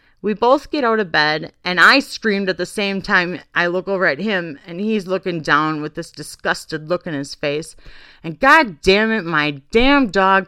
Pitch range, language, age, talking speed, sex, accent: 160-220 Hz, English, 40-59, 205 wpm, female, American